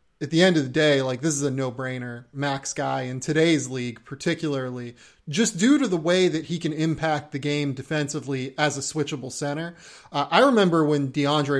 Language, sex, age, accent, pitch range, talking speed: English, male, 30-49, American, 140-160 Hz, 195 wpm